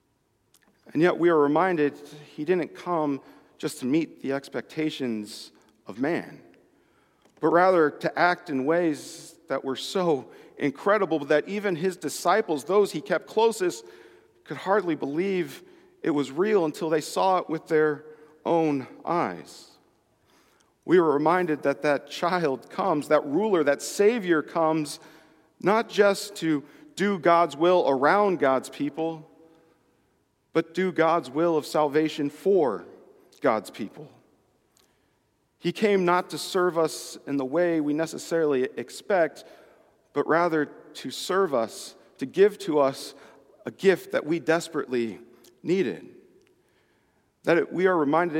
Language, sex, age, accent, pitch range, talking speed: English, male, 40-59, American, 145-180 Hz, 135 wpm